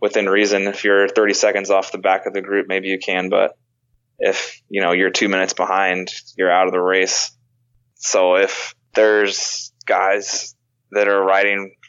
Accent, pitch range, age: American, 95-120 Hz, 20-39